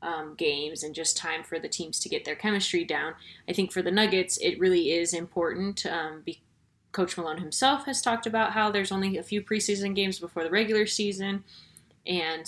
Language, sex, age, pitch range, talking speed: English, female, 20-39, 165-215 Hz, 200 wpm